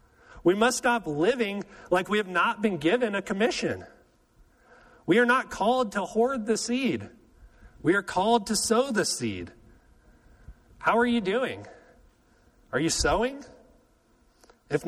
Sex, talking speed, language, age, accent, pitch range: male, 140 wpm, English, 40-59, American, 150-230 Hz